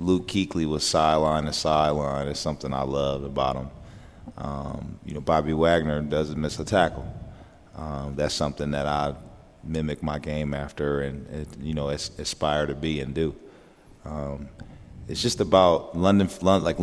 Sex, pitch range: male, 75-90 Hz